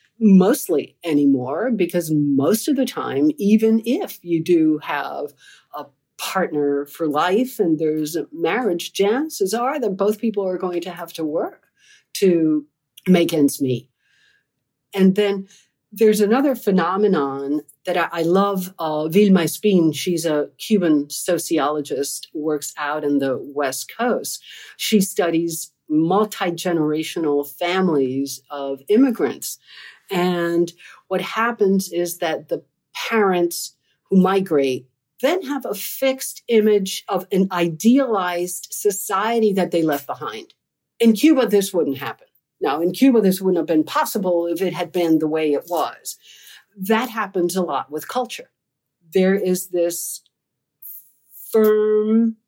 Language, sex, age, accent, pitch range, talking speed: English, female, 50-69, American, 155-210 Hz, 130 wpm